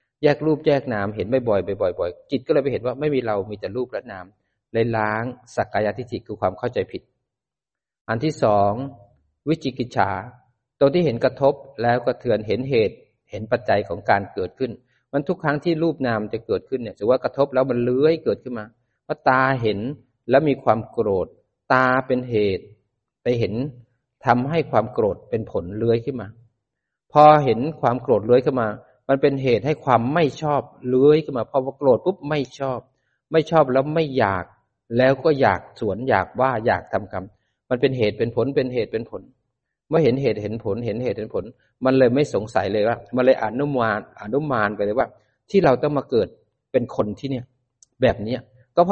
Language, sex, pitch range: Thai, male, 115-145 Hz